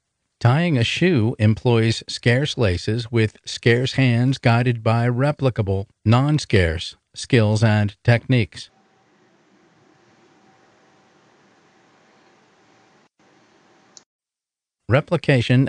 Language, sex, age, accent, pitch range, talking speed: English, male, 50-69, American, 110-130 Hz, 65 wpm